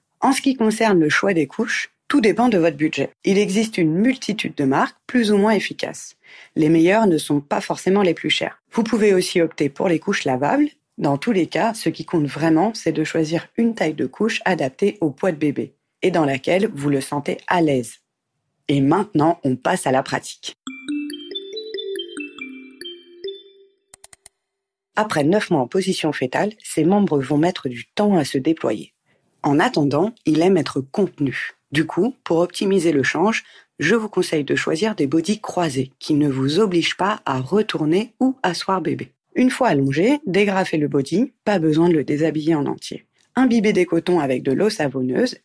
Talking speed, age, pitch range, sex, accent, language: 185 wpm, 40-59, 155-220 Hz, female, French, French